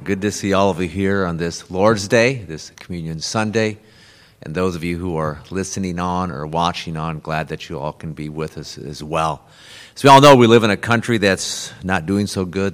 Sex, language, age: male, English, 50-69